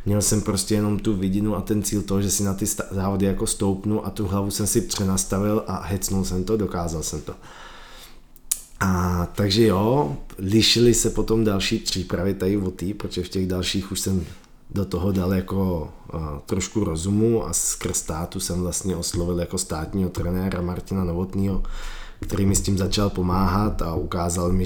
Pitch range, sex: 90-100 Hz, male